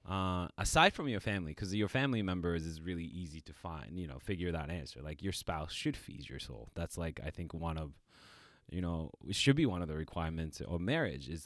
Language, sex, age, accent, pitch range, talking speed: English, male, 20-39, American, 85-105 Hz, 230 wpm